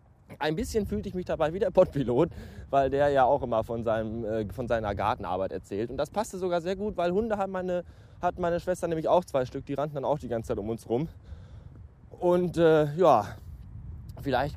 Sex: male